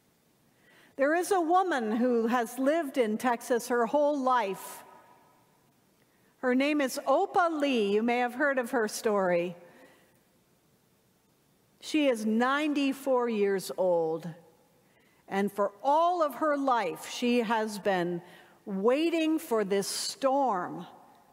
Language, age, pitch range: English, 50-69, 200-285 Hz